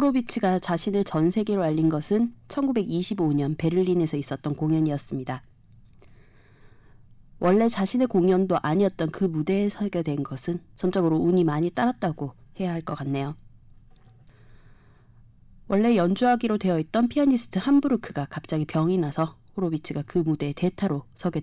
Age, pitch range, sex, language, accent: 20-39, 145-205 Hz, female, Korean, native